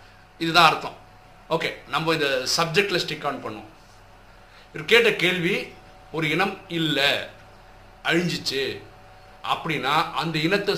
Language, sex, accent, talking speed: Tamil, male, native, 100 wpm